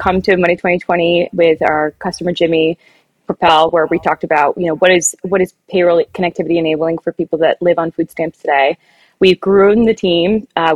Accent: American